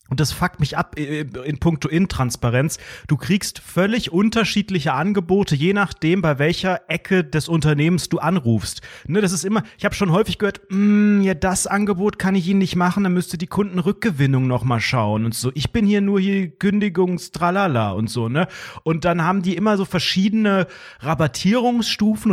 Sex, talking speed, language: male, 175 wpm, German